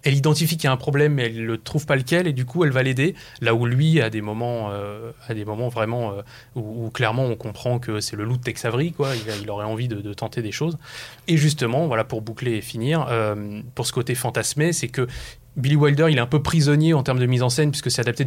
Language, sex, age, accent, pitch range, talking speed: French, male, 20-39, French, 115-145 Hz, 275 wpm